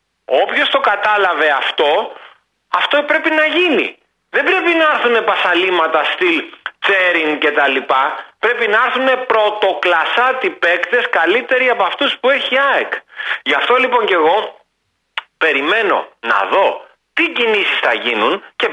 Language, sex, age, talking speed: Greek, male, 40-59, 140 wpm